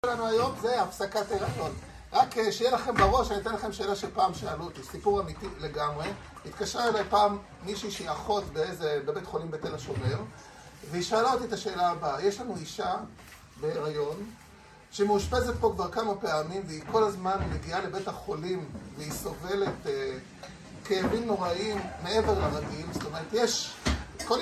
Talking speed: 150 wpm